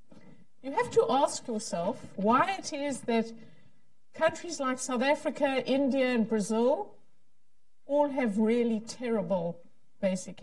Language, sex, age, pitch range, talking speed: English, female, 50-69, 210-265 Hz, 120 wpm